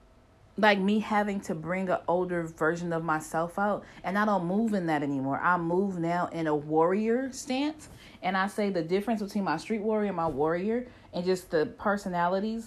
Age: 40-59